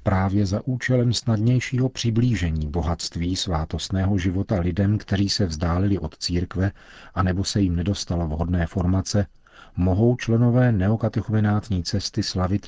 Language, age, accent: Czech, 40-59, native